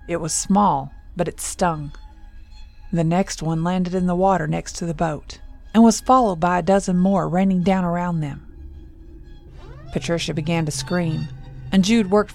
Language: English